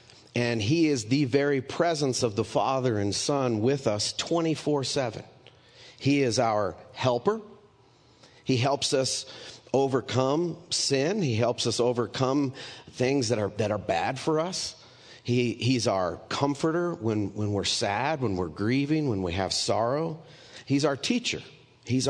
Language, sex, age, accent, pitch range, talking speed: English, male, 40-59, American, 110-135 Hz, 145 wpm